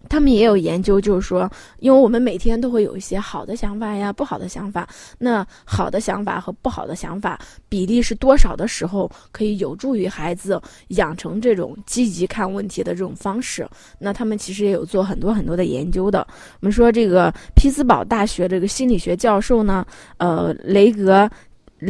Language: Chinese